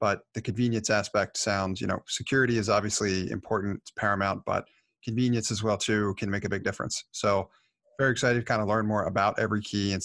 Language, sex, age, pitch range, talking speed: English, male, 30-49, 100-115 Hz, 210 wpm